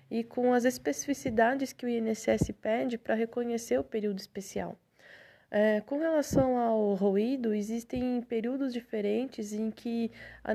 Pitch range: 220-255 Hz